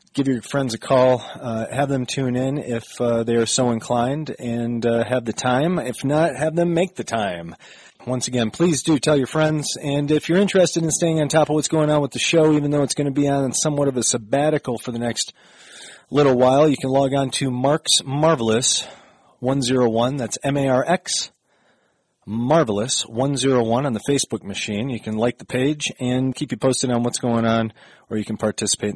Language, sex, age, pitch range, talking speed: English, male, 30-49, 120-155 Hz, 205 wpm